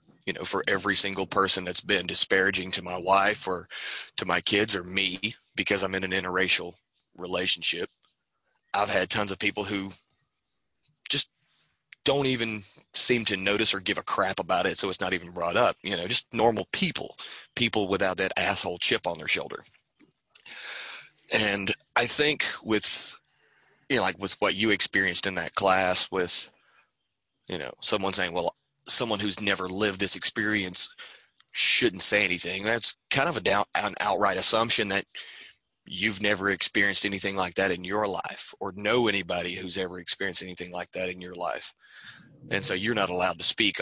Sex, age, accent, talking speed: male, 30-49, American, 175 wpm